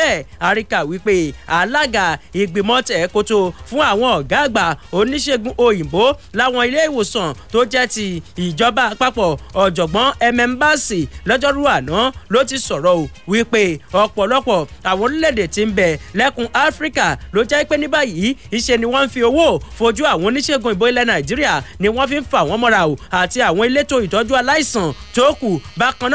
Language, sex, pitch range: English, male, 205-275 Hz